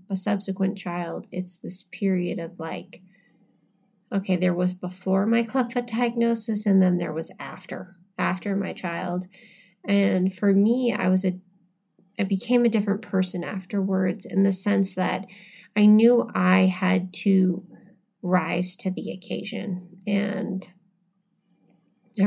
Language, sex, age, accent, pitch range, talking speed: English, female, 20-39, American, 185-205 Hz, 135 wpm